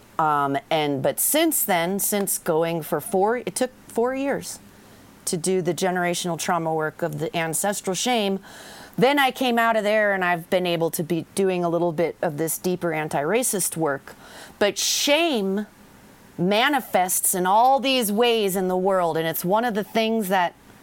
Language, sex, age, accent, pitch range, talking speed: English, female, 40-59, American, 180-240 Hz, 175 wpm